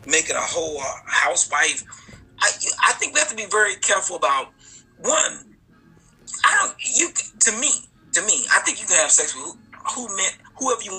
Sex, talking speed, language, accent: male, 190 wpm, English, American